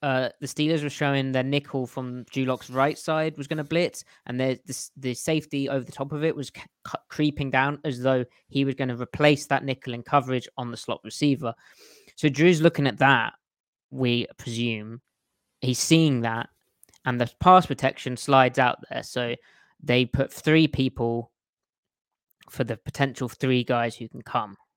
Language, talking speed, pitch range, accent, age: English, 180 wpm, 125-150 Hz, British, 20-39